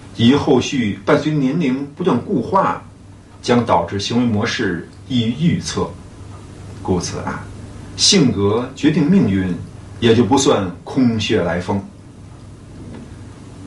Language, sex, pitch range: Chinese, male, 95-125 Hz